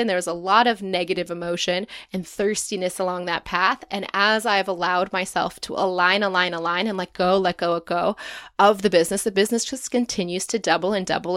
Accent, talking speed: American, 200 wpm